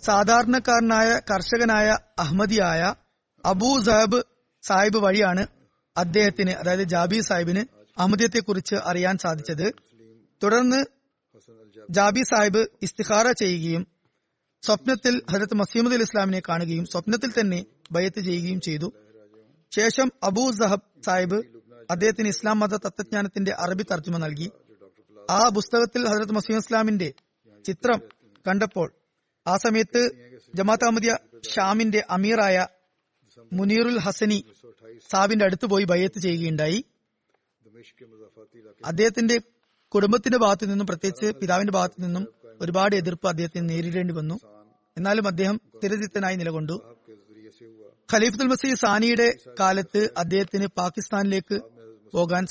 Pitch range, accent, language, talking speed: 170-215 Hz, native, Malayalam, 90 wpm